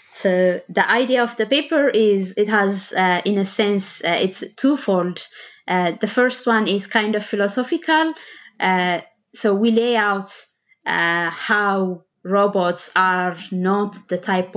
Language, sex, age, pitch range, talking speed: English, female, 20-39, 180-210 Hz, 150 wpm